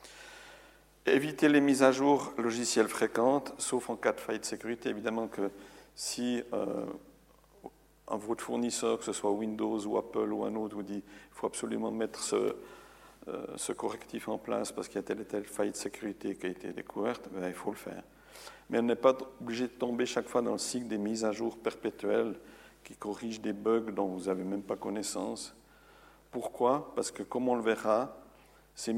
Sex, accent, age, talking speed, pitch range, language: male, French, 50-69, 200 wpm, 100-120 Hz, French